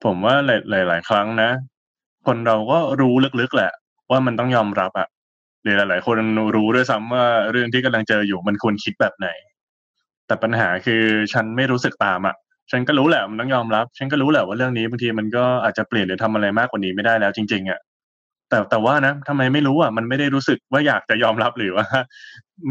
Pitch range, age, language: 105-125 Hz, 20-39, Thai